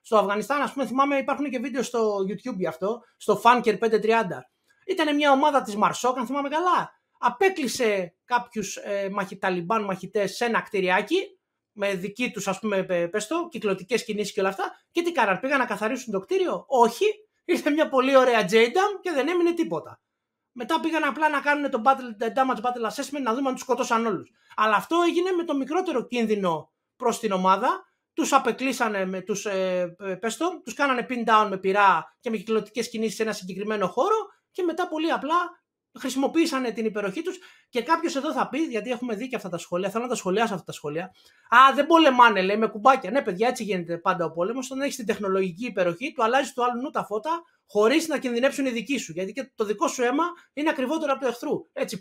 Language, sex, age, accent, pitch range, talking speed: Greek, male, 30-49, native, 205-285 Hz, 205 wpm